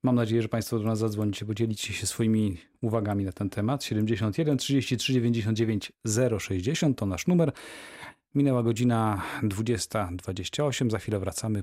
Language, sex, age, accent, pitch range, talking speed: Polish, male, 40-59, native, 105-125 Hz, 140 wpm